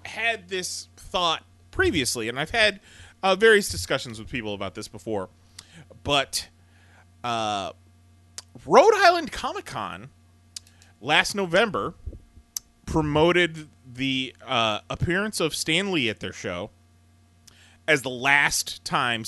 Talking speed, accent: 110 wpm, American